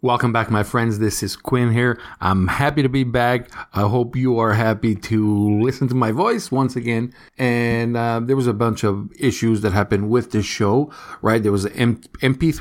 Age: 50-69